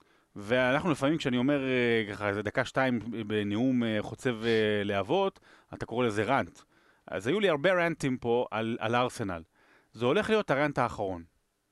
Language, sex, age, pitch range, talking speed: Hebrew, male, 30-49, 120-165 Hz, 145 wpm